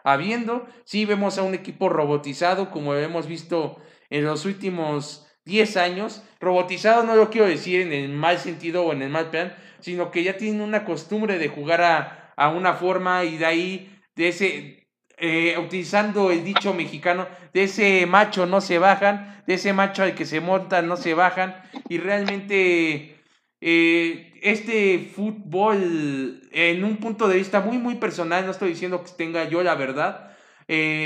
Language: Spanish